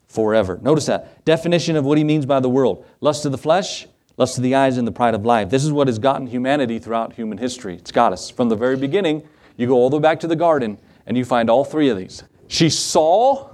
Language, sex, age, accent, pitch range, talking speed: English, male, 40-59, American, 125-170 Hz, 255 wpm